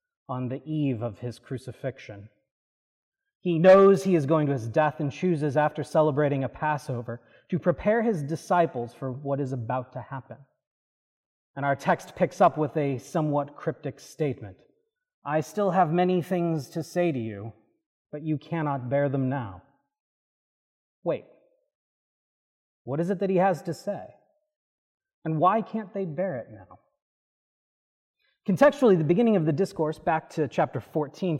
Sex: male